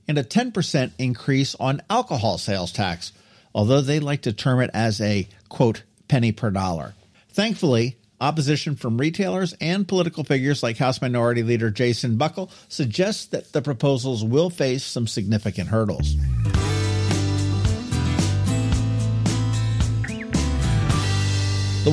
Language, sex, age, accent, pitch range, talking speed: English, male, 50-69, American, 110-155 Hz, 120 wpm